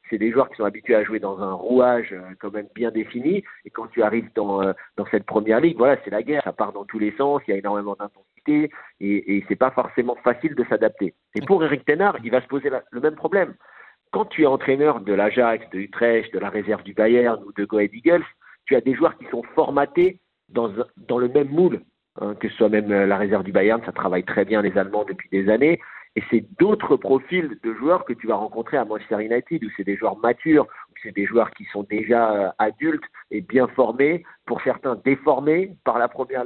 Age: 50-69